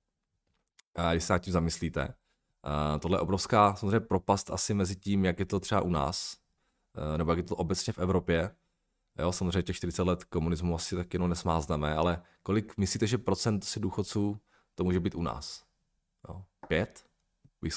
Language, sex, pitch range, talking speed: Czech, male, 85-110 Hz, 175 wpm